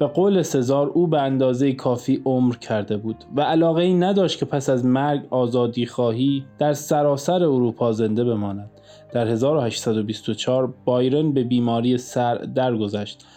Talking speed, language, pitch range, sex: 145 wpm, Persian, 120-150 Hz, male